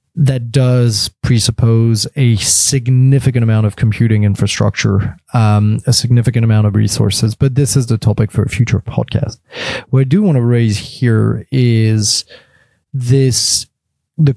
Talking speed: 140 wpm